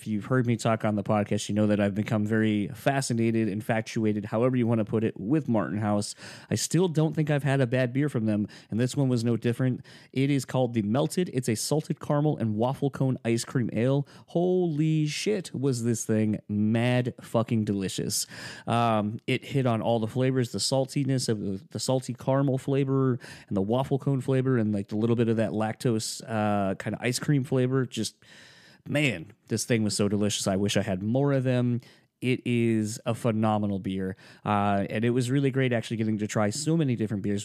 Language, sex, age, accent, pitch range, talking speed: English, male, 30-49, American, 105-130 Hz, 210 wpm